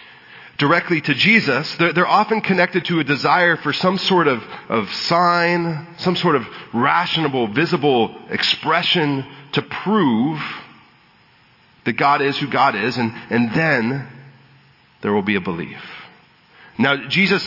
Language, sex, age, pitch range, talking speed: English, male, 40-59, 135-180 Hz, 135 wpm